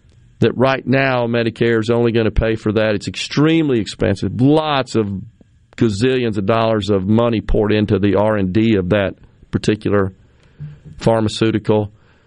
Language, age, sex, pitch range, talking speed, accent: English, 40-59, male, 105-125 Hz, 140 wpm, American